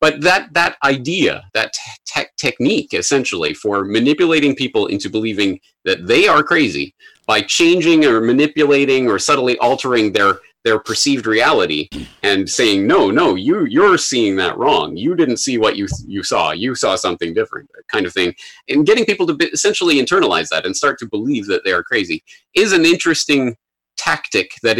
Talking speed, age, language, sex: 175 wpm, 30-49, English, male